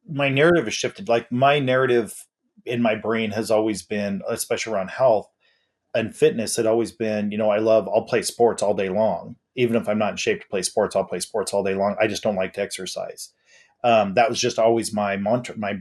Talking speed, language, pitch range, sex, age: 230 wpm, English, 100-125 Hz, male, 30-49